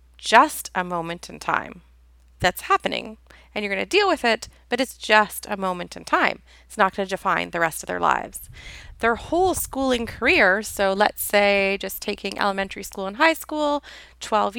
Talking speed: 180 wpm